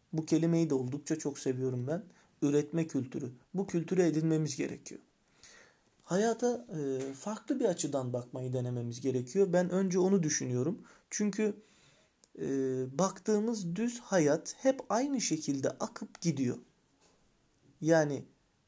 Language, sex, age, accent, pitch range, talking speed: Turkish, male, 40-59, native, 140-195 Hz, 110 wpm